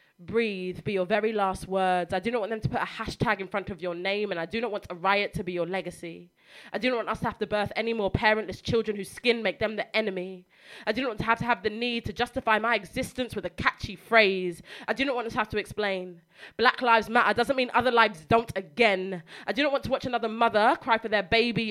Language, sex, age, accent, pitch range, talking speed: English, female, 20-39, British, 190-230 Hz, 270 wpm